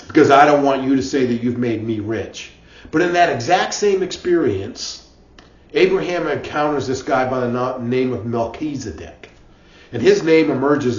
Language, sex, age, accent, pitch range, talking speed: English, male, 40-59, American, 125-160 Hz, 170 wpm